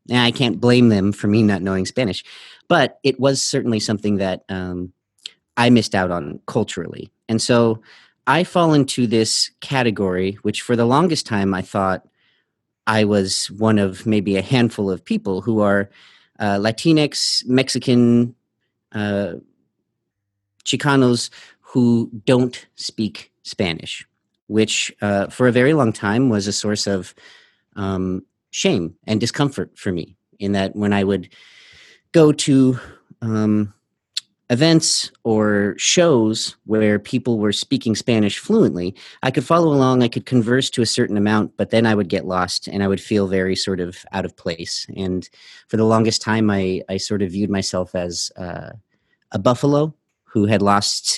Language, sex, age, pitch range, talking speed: English, male, 40-59, 100-125 Hz, 160 wpm